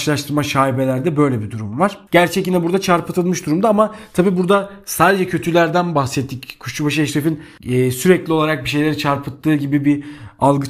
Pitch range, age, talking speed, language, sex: 145-180 Hz, 40-59, 145 wpm, Turkish, male